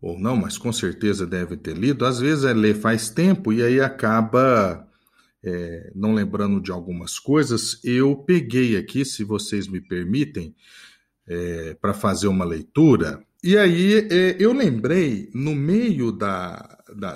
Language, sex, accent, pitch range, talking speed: Portuguese, male, Brazilian, 105-160 Hz, 155 wpm